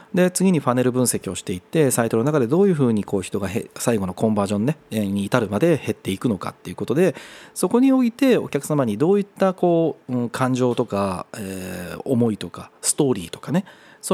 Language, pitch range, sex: Japanese, 115-185 Hz, male